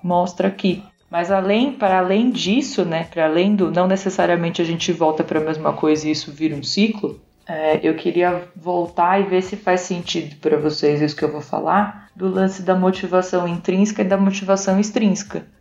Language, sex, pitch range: Portuguese, female, 165-205 Hz